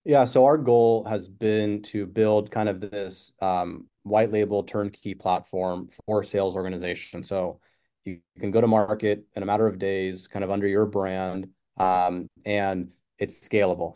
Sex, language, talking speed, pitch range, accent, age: male, English, 170 wpm, 95-110 Hz, American, 30-49